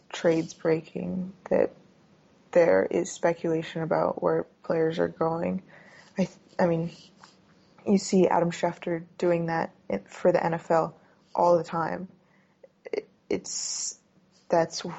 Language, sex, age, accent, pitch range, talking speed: English, female, 20-39, American, 170-185 Hz, 125 wpm